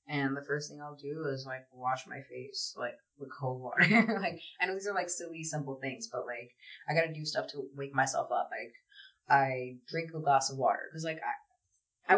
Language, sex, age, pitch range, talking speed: English, female, 20-39, 140-175 Hz, 220 wpm